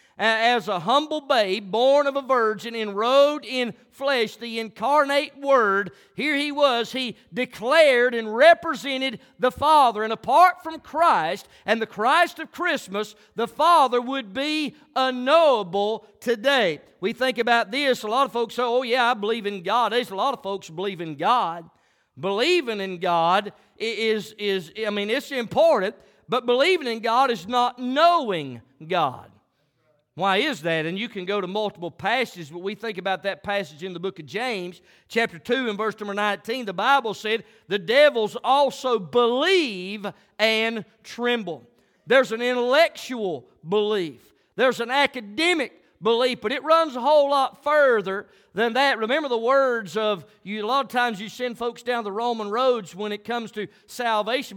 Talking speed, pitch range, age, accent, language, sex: 165 wpm, 205-260 Hz, 50-69, American, English, male